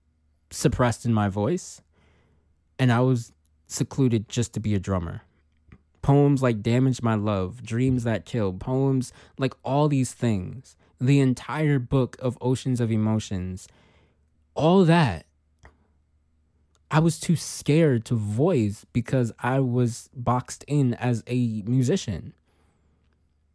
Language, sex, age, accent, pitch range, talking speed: English, male, 20-39, American, 80-130 Hz, 125 wpm